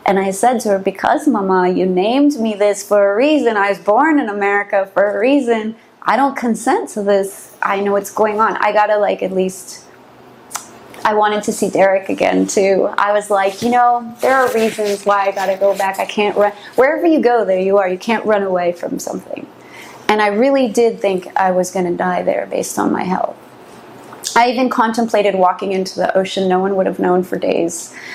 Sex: female